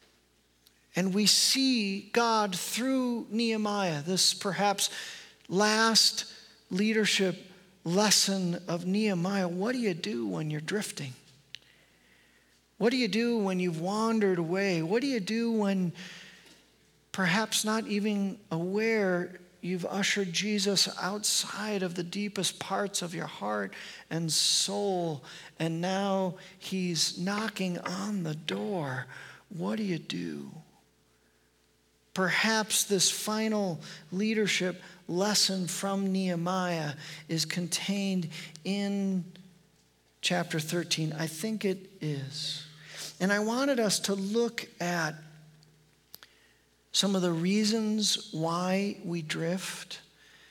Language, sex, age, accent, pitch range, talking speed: English, male, 50-69, American, 160-205 Hz, 110 wpm